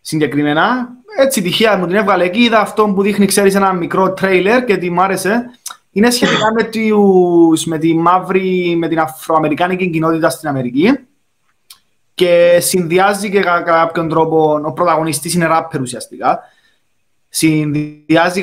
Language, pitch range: Greek, 155-195 Hz